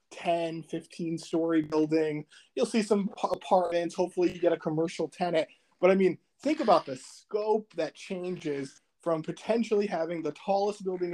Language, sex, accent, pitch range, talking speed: English, male, American, 160-210 Hz, 155 wpm